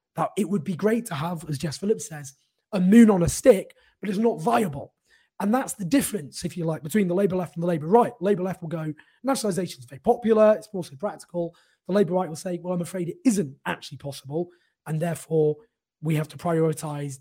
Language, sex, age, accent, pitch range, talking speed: English, male, 20-39, British, 140-185 Hz, 225 wpm